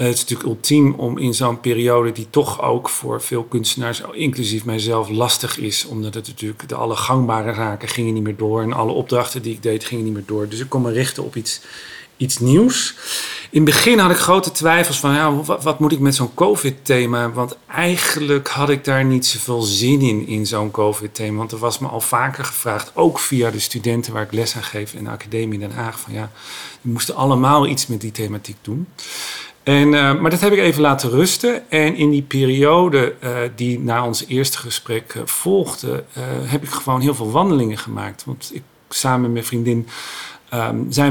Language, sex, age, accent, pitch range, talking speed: Dutch, male, 40-59, Dutch, 115-150 Hz, 205 wpm